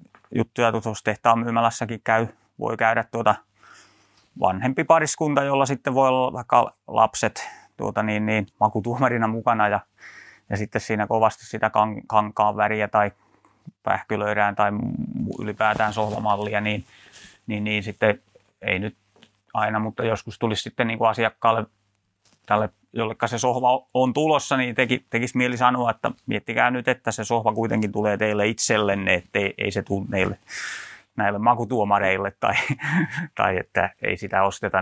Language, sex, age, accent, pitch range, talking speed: Finnish, male, 30-49, native, 100-115 Hz, 140 wpm